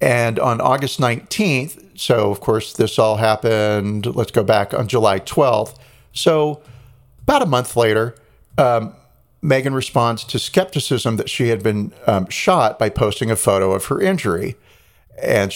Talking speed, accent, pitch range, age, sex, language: 155 wpm, American, 105-135 Hz, 40-59, male, English